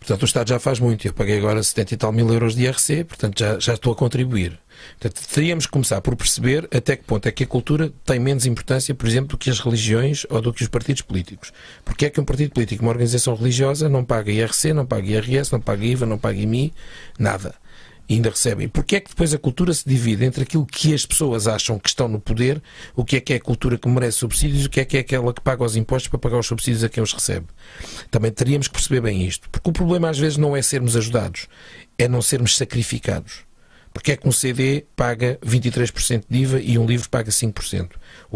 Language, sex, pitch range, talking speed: English, male, 110-135 Hz, 240 wpm